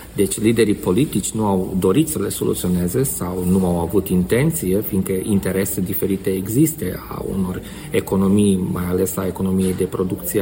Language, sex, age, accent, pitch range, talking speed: Romanian, male, 40-59, native, 95-125 Hz, 155 wpm